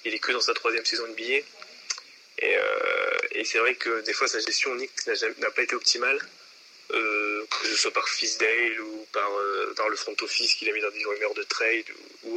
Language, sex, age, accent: French, male, 20-39, French